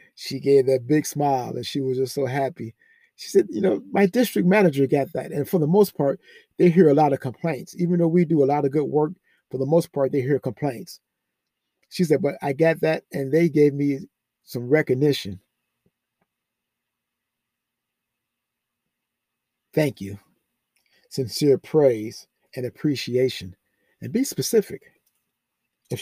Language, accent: English, American